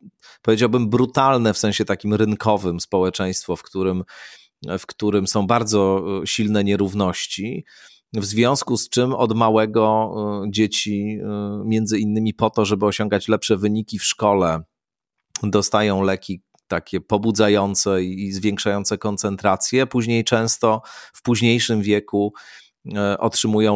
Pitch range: 100-110 Hz